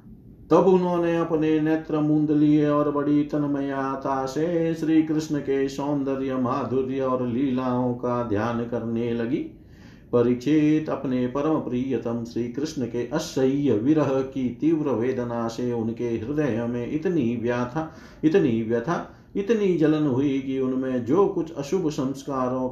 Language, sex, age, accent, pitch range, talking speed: Hindi, male, 50-69, native, 120-150 Hz, 125 wpm